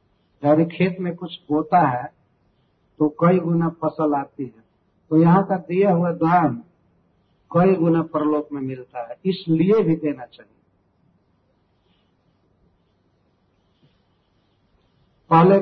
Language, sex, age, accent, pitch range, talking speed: Hindi, male, 50-69, native, 130-175 Hz, 110 wpm